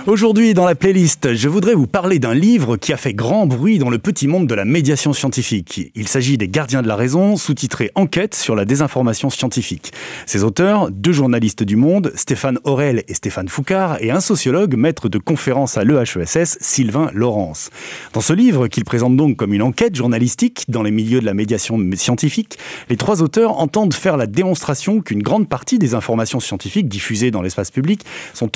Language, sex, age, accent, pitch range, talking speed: French, male, 30-49, French, 115-180 Hz, 195 wpm